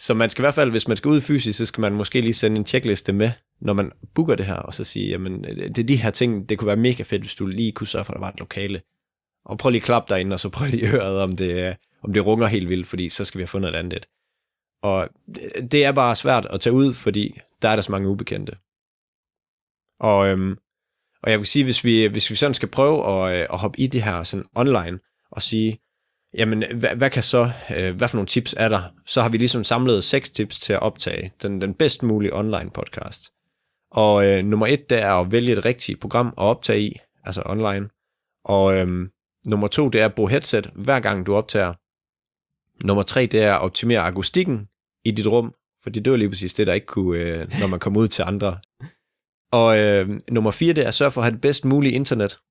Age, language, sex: 20-39, Danish, male